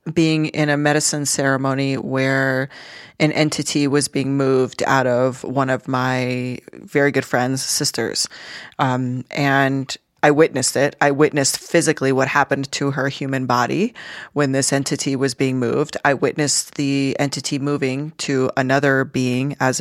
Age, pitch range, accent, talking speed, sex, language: 30-49, 135-155 Hz, American, 150 wpm, female, English